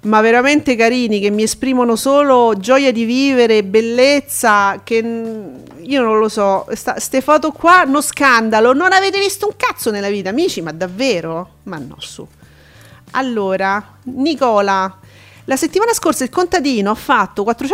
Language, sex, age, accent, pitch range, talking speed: Italian, female, 40-59, native, 200-275 Hz, 145 wpm